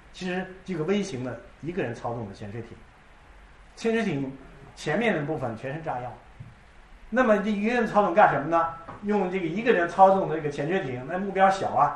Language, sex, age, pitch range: Chinese, male, 50-69, 135-195 Hz